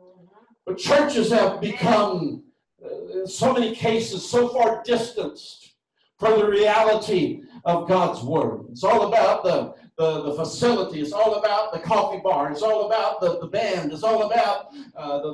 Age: 60-79